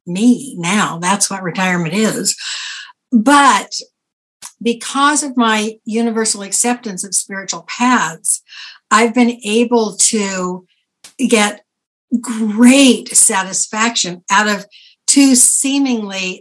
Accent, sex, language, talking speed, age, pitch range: American, female, English, 95 wpm, 60-79, 200-240 Hz